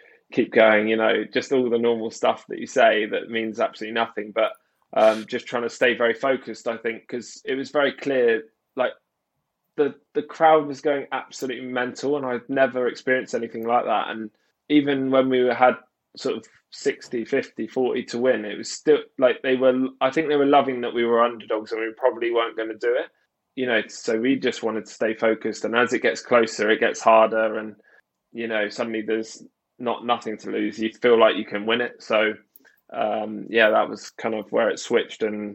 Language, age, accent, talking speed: English, 20-39, British, 210 wpm